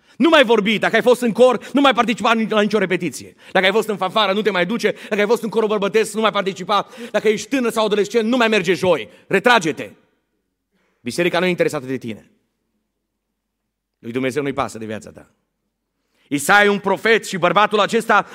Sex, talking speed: male, 200 wpm